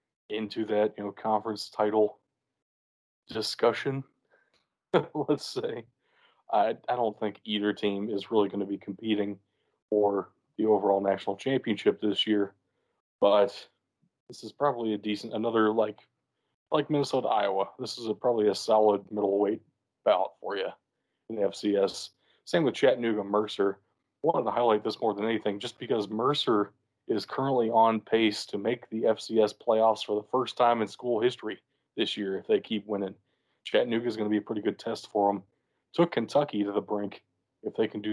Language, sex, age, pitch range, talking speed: English, male, 20-39, 105-115 Hz, 170 wpm